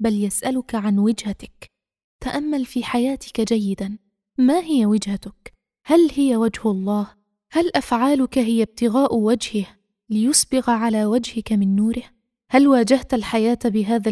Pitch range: 205-250 Hz